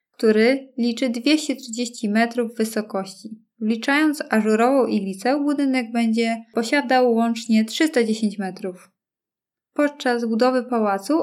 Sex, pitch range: female, 215-255 Hz